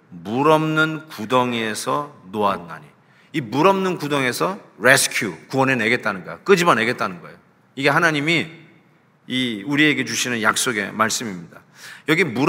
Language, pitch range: Korean, 125-165 Hz